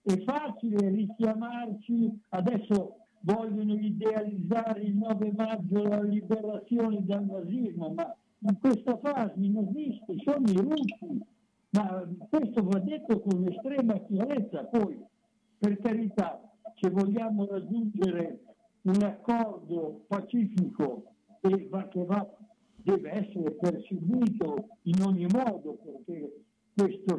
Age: 60-79